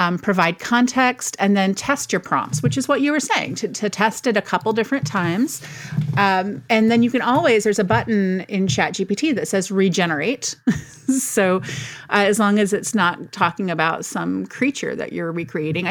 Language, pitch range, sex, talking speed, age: English, 165-210 Hz, female, 190 wpm, 30-49